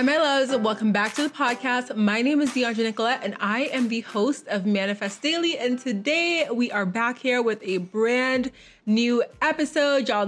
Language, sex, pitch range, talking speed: English, female, 210-270 Hz, 195 wpm